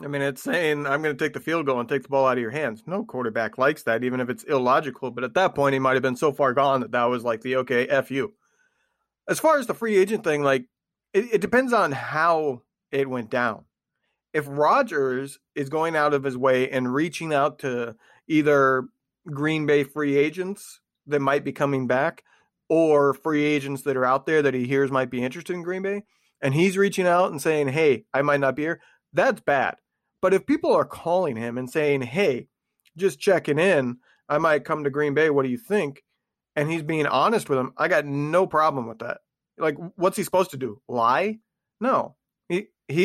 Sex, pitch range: male, 135-180 Hz